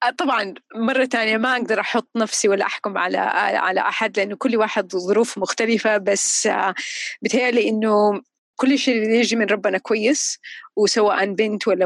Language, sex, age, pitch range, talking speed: Arabic, female, 30-49, 205-255 Hz, 145 wpm